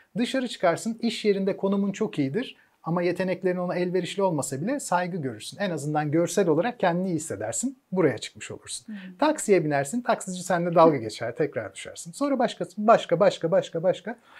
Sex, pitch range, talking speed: male, 150-205 Hz, 165 wpm